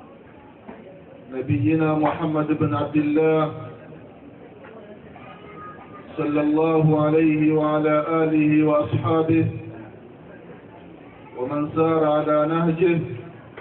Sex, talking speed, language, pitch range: male, 65 wpm, Swahili, 145-155 Hz